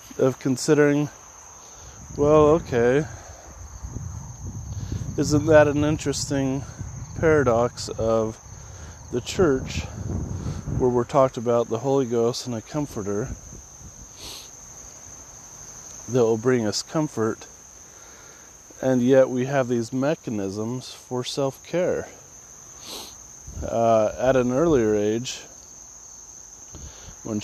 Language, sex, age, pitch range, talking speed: English, male, 30-49, 105-130 Hz, 85 wpm